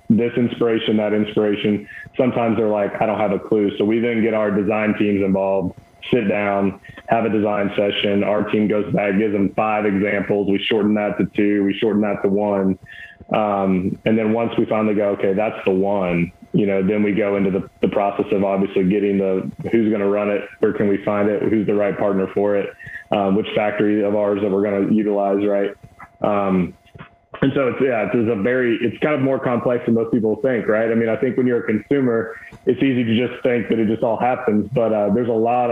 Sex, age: male, 20-39